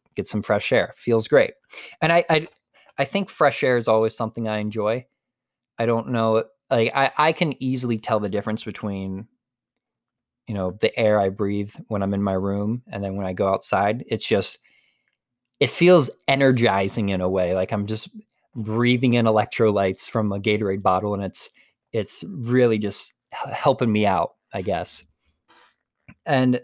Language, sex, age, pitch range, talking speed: English, male, 20-39, 100-125 Hz, 170 wpm